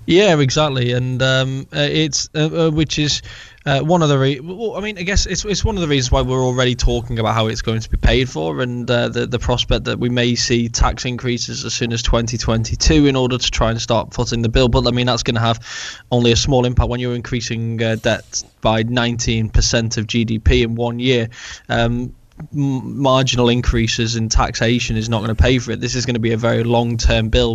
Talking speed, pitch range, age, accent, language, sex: 230 wpm, 115-125 Hz, 10-29, British, English, male